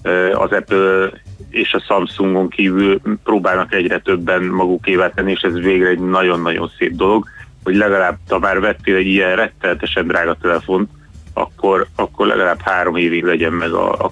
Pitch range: 90-105 Hz